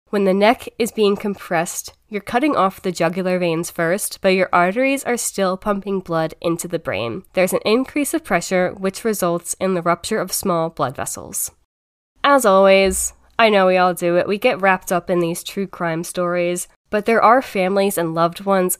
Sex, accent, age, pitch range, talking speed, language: female, American, 10-29, 175-225 Hz, 195 wpm, English